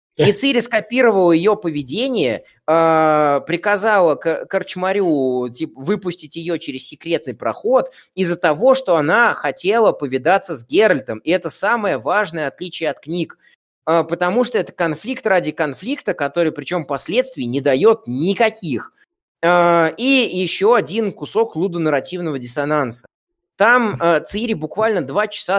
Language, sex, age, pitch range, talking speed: Russian, male, 20-39, 150-205 Hz, 120 wpm